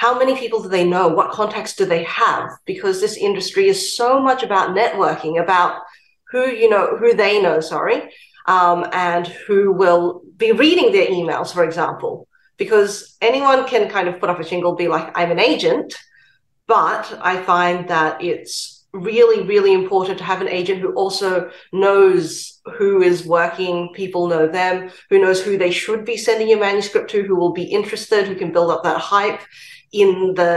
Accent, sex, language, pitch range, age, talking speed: Australian, female, English, 170-235 Hz, 30-49, 185 wpm